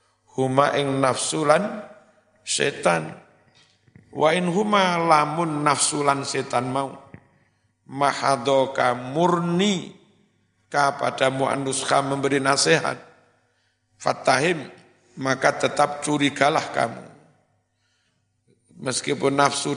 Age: 50-69